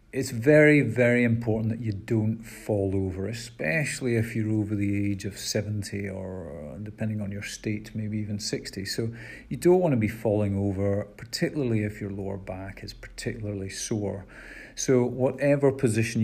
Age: 40-59